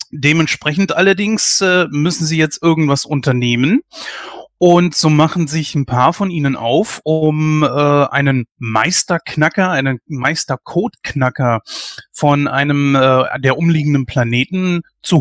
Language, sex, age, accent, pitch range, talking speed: German, male, 30-49, German, 135-170 Hz, 120 wpm